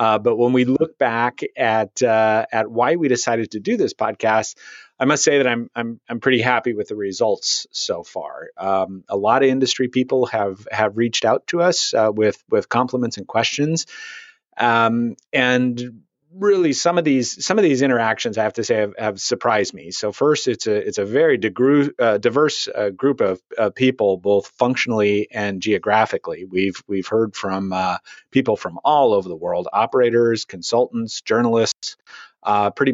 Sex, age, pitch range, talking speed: male, 30-49, 110-135 Hz, 185 wpm